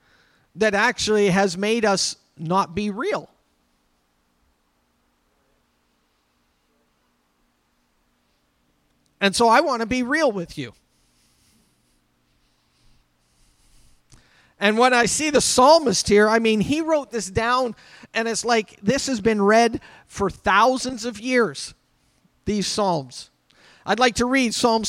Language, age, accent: English, 50-69, American